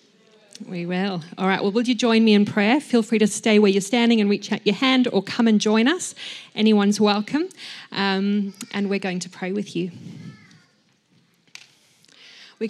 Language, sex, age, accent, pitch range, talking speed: English, female, 40-59, Australian, 195-225 Hz, 185 wpm